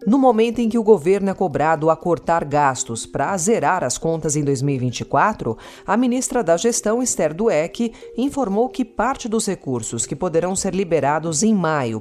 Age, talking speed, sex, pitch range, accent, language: 40-59, 170 wpm, female, 140-205 Hz, Brazilian, Portuguese